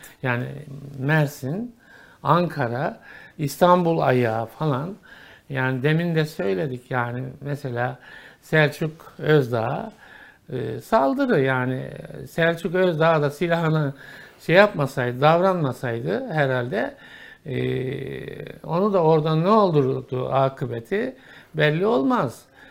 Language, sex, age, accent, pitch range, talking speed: Turkish, male, 60-79, native, 135-200 Hz, 85 wpm